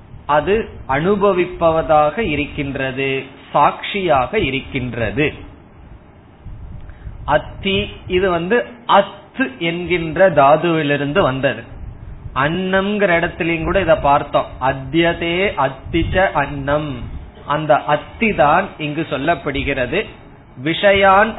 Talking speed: 75 wpm